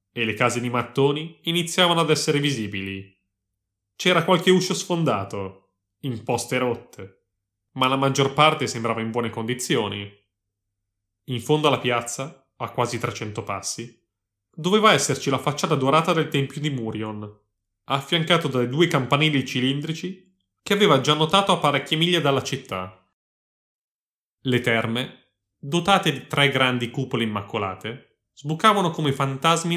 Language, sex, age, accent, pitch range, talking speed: Italian, male, 30-49, native, 105-150 Hz, 130 wpm